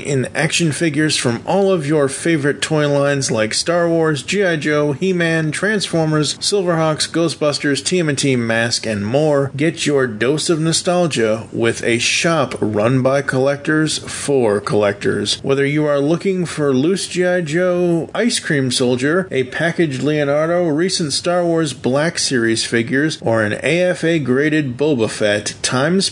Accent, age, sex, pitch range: American, 40-59, male, 125-170 Hz